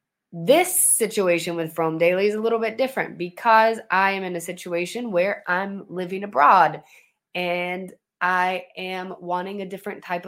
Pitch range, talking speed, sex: 160-210 Hz, 160 wpm, female